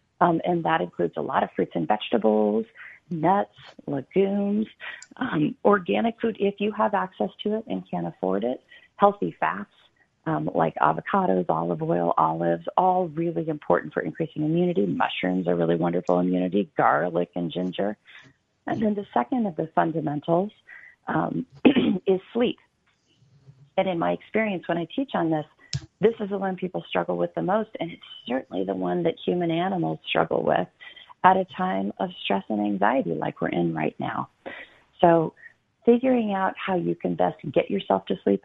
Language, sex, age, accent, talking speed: English, female, 40-59, American, 170 wpm